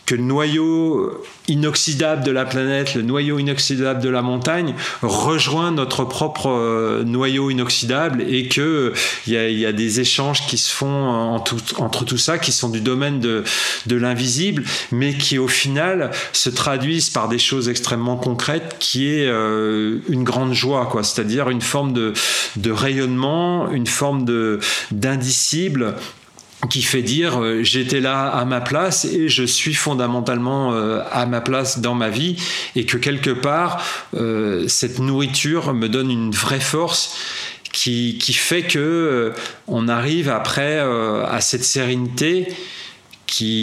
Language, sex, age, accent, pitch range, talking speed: French, male, 40-59, French, 115-140 Hz, 155 wpm